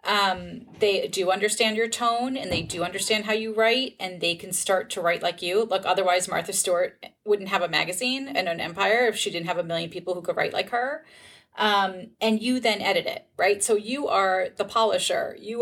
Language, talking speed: English, 220 wpm